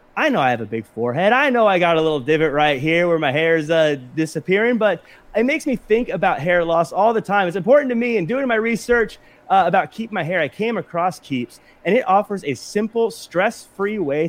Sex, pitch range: male, 150-205 Hz